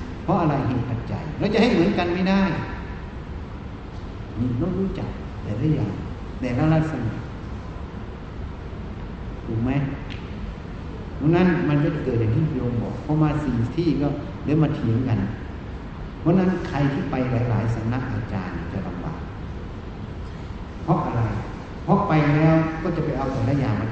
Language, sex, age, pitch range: Thai, male, 60-79, 100-150 Hz